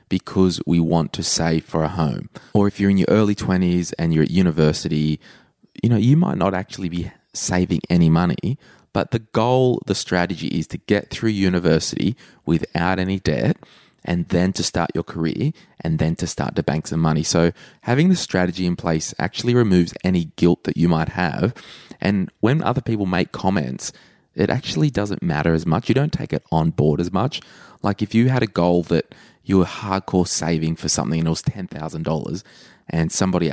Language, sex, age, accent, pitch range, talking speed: English, male, 20-39, Australian, 80-100 Hz, 195 wpm